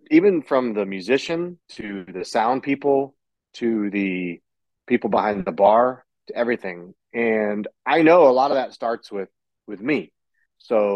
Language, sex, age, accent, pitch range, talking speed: English, male, 30-49, American, 105-130 Hz, 155 wpm